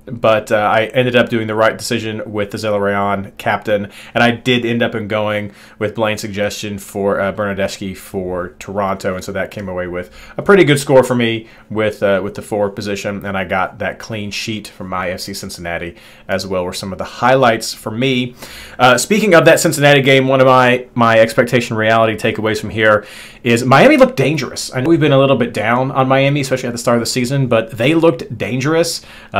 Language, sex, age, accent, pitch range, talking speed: English, male, 30-49, American, 105-130 Hz, 215 wpm